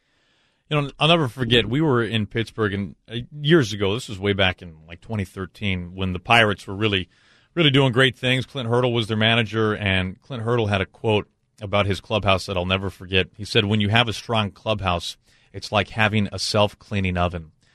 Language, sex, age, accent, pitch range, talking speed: English, male, 40-59, American, 100-120 Hz, 205 wpm